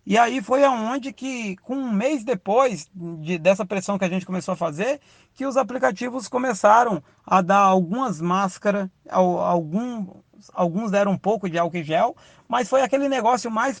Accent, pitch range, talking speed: Brazilian, 190-250 Hz, 170 wpm